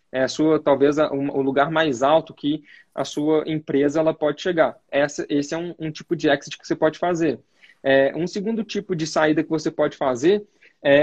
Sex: male